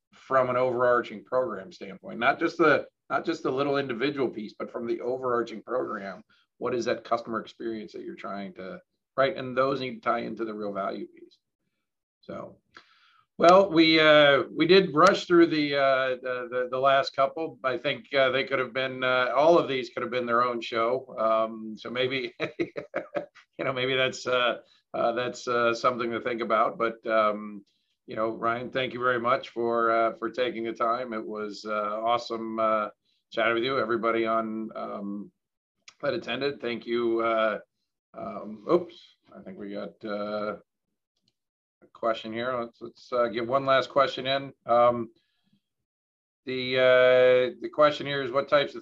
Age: 50-69